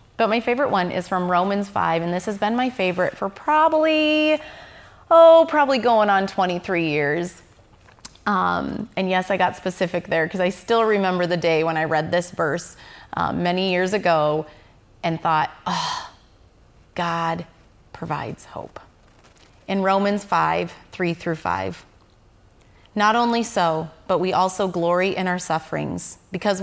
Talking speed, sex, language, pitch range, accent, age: 150 wpm, female, English, 160-210 Hz, American, 30-49